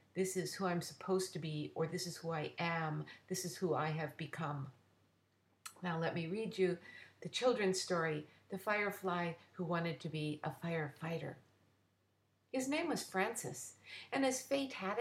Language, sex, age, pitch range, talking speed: English, female, 50-69, 160-215 Hz, 170 wpm